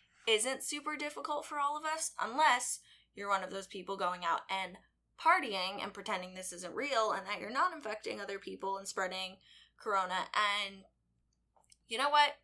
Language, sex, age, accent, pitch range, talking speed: English, female, 10-29, American, 185-220 Hz, 175 wpm